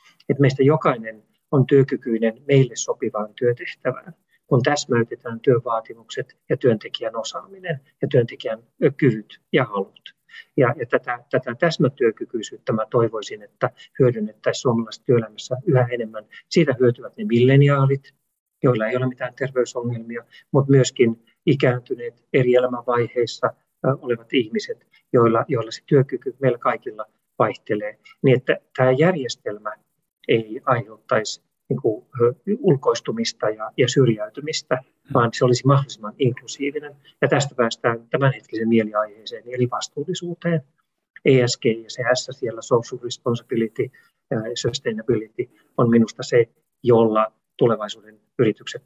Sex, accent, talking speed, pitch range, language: male, native, 105 wpm, 115-145 Hz, Finnish